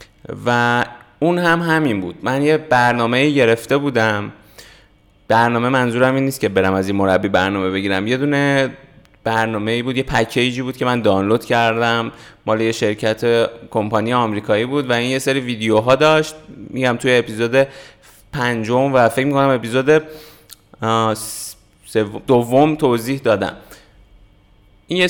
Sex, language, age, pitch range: male, Persian, 20-39, 115-140 Hz